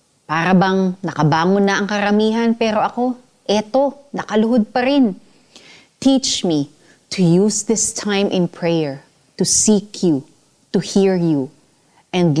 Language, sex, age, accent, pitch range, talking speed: Filipino, female, 30-49, native, 170-240 Hz, 125 wpm